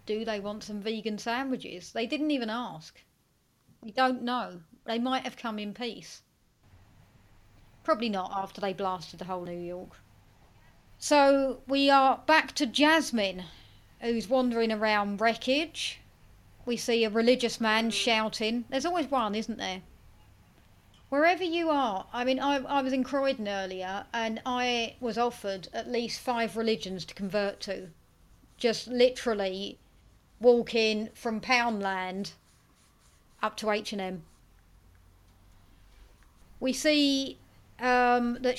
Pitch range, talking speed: 200-250 Hz, 130 wpm